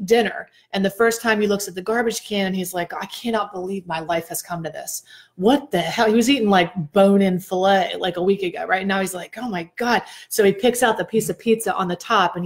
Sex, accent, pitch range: female, American, 185-225 Hz